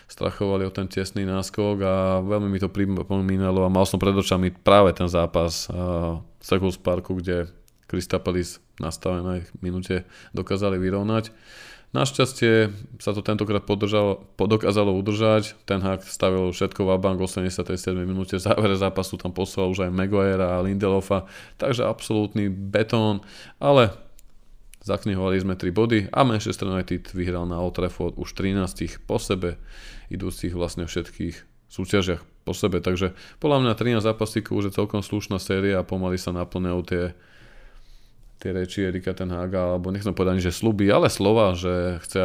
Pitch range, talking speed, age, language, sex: 90-105 Hz, 155 wpm, 20-39, Slovak, male